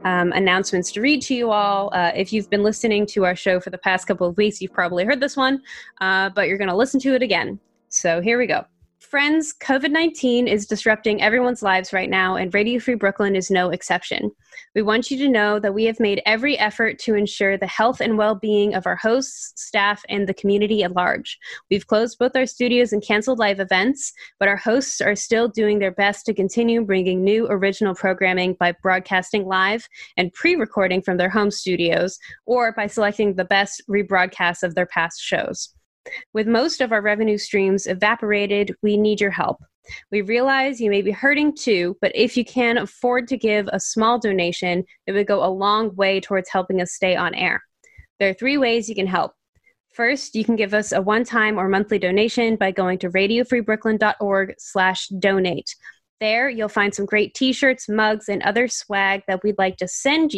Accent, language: American, English